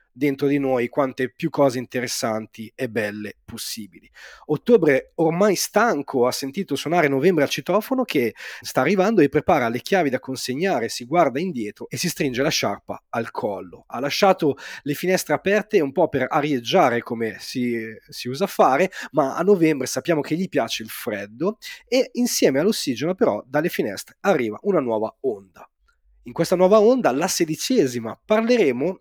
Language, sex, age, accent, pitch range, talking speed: Italian, male, 30-49, native, 130-200 Hz, 160 wpm